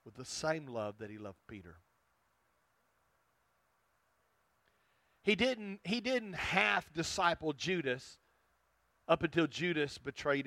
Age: 40-59